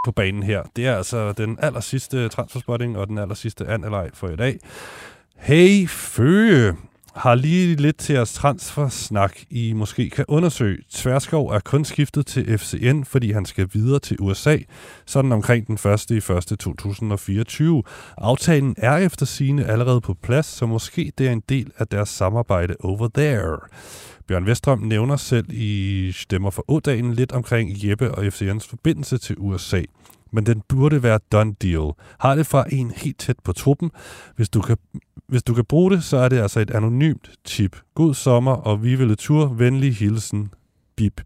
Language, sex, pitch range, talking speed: Danish, male, 105-135 Hz, 170 wpm